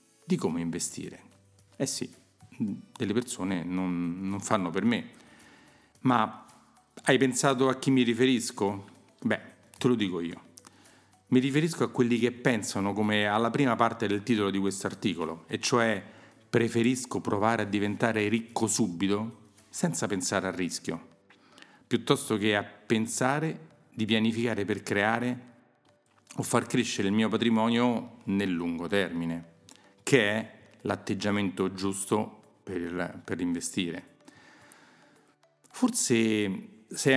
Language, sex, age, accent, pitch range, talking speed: Italian, male, 40-59, native, 95-115 Hz, 125 wpm